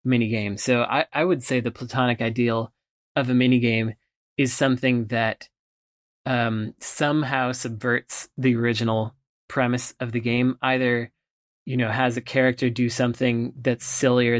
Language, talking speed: English, 145 wpm